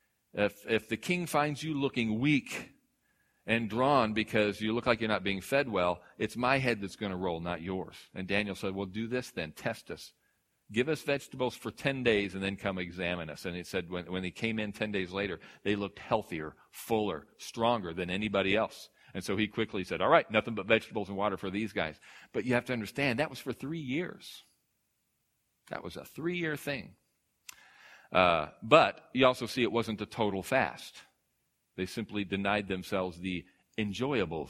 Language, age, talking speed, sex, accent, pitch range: English, 40-59, 195 wpm, male, American, 95-125 Hz